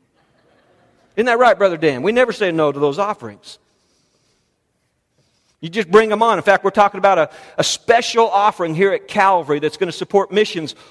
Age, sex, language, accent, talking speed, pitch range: 50-69, male, English, American, 185 wpm, 130-210 Hz